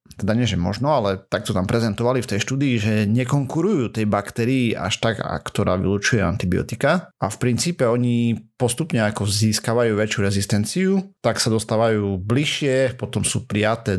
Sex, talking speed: male, 165 wpm